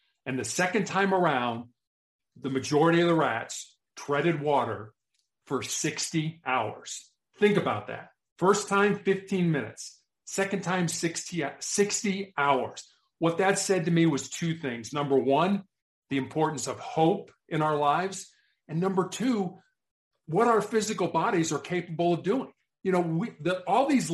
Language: English